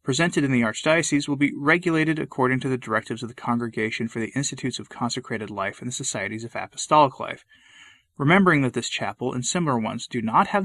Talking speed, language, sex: 205 wpm, English, male